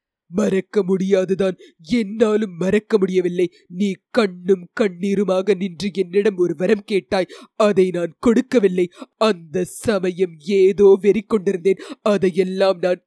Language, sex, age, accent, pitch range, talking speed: English, female, 30-49, Indian, 190-250 Hz, 105 wpm